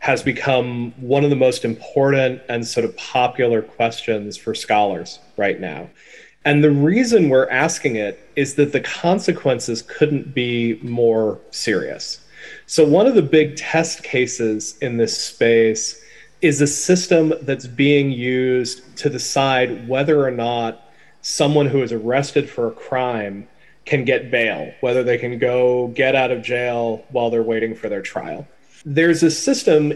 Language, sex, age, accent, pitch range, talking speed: Greek, male, 30-49, American, 120-150 Hz, 155 wpm